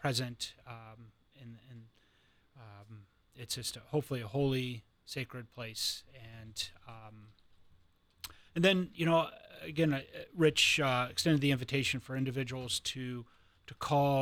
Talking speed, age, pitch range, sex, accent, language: 130 wpm, 30-49, 110-135 Hz, male, American, English